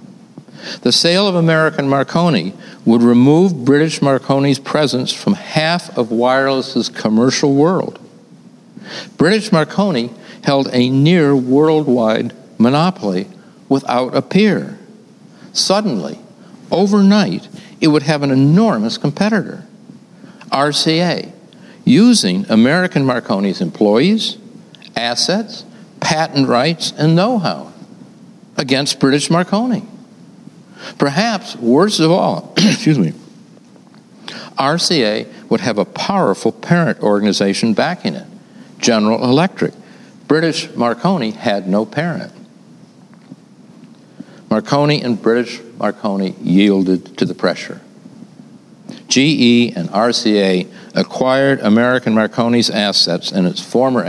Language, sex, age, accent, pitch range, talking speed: English, male, 60-79, American, 125-215 Hz, 95 wpm